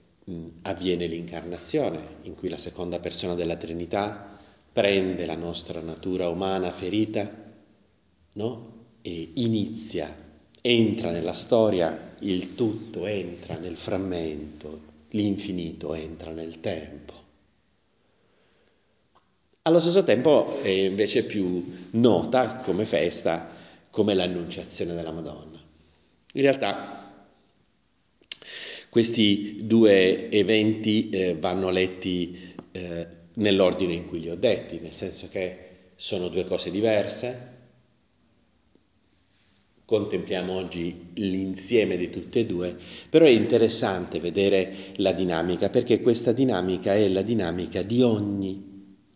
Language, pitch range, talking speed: Italian, 85-110 Hz, 105 wpm